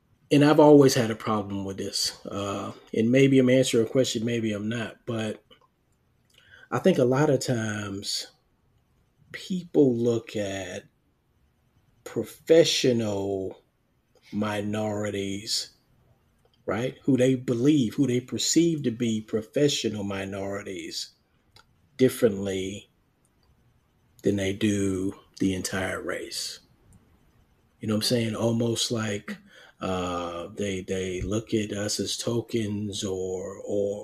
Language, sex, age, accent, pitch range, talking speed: English, male, 40-59, American, 100-125 Hz, 115 wpm